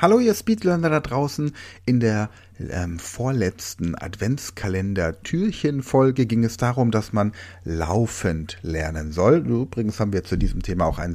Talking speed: 145 wpm